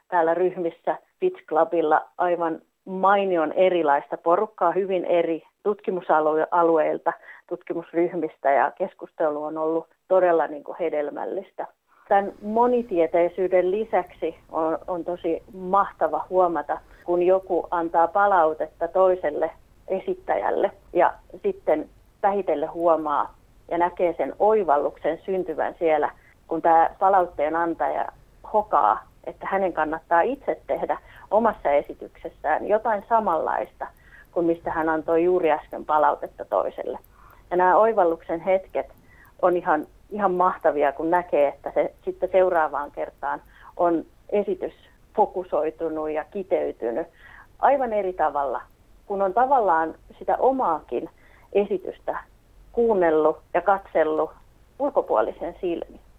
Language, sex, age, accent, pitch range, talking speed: English, female, 30-49, Finnish, 160-195 Hz, 105 wpm